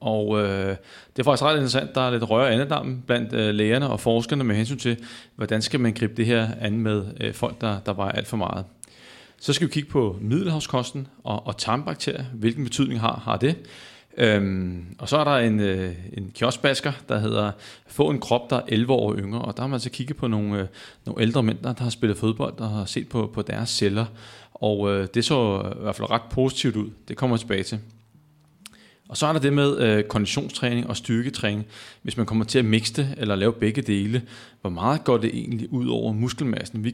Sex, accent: male, native